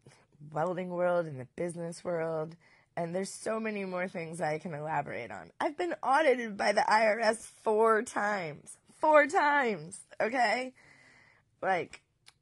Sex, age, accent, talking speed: female, 20-39, American, 135 wpm